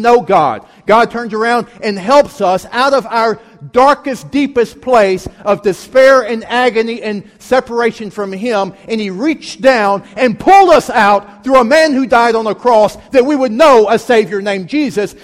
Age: 50-69